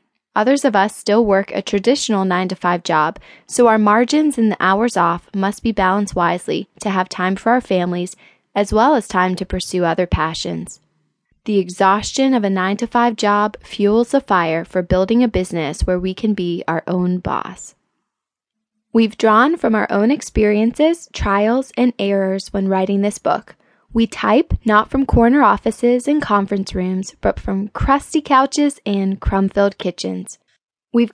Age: 20-39